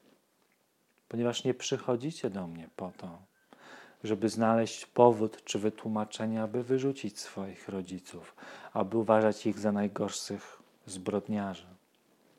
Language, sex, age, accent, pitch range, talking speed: Polish, male, 40-59, native, 95-125 Hz, 105 wpm